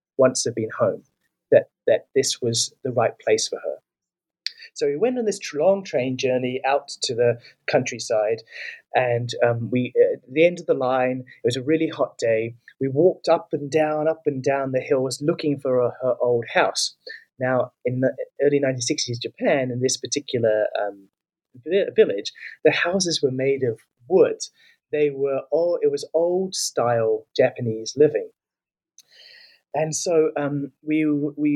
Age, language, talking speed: 30-49, English, 165 wpm